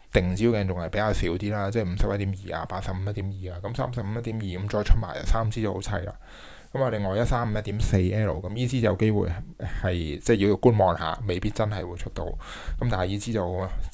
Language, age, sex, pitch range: Chinese, 20-39, male, 90-110 Hz